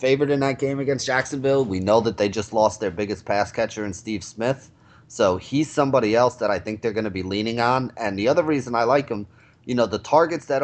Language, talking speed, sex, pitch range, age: English, 250 wpm, male, 105-130 Hz, 30-49